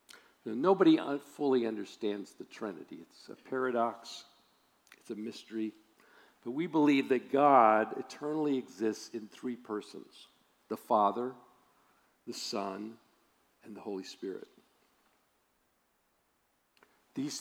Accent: American